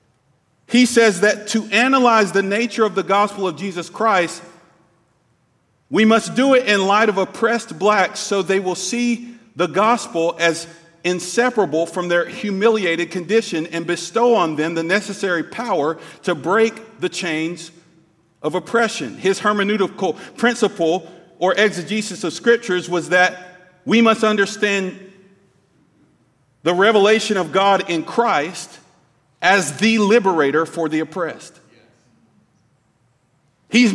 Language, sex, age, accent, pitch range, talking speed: English, male, 40-59, American, 180-230 Hz, 125 wpm